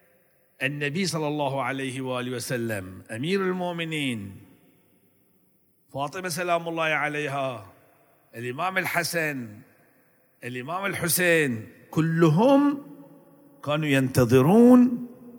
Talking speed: 75 wpm